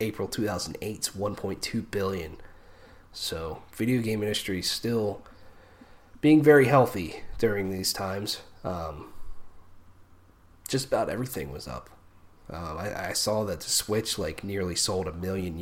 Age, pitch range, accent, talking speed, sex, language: 30-49, 90-110 Hz, American, 140 wpm, male, English